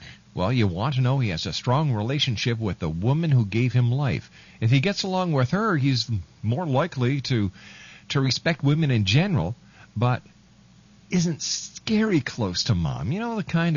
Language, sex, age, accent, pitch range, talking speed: English, male, 50-69, American, 110-145 Hz, 185 wpm